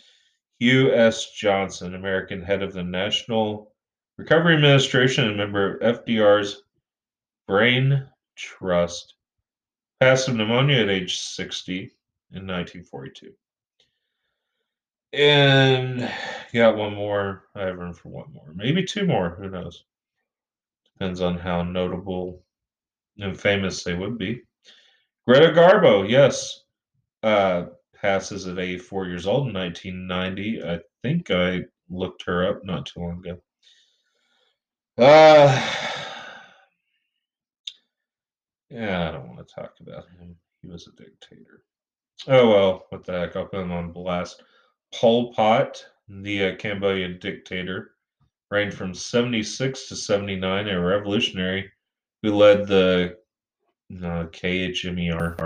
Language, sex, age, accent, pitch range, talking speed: English, male, 30-49, American, 90-115 Hz, 120 wpm